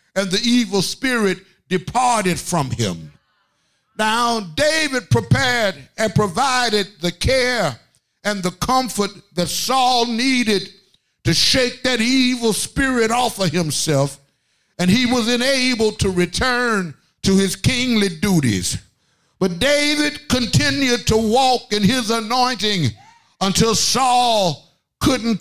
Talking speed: 115 wpm